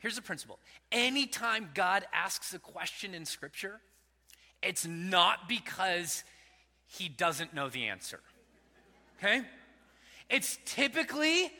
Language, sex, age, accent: English, male, 30-49, American